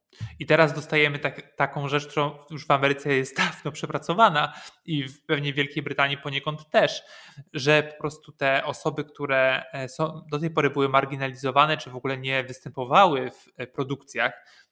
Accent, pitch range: native, 135-160 Hz